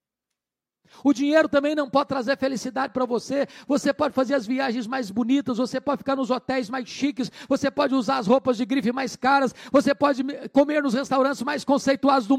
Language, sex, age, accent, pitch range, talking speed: Portuguese, male, 50-69, Brazilian, 170-280 Hz, 195 wpm